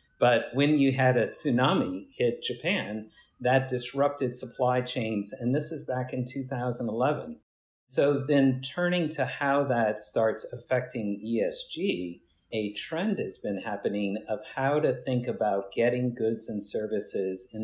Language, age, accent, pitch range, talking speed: English, 50-69, American, 110-135 Hz, 145 wpm